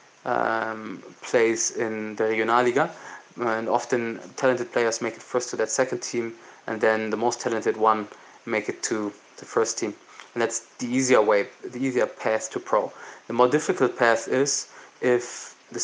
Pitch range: 110-125 Hz